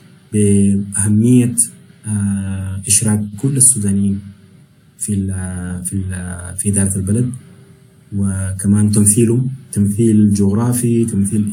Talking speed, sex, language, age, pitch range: 90 wpm, male, Arabic, 20-39, 100-115 Hz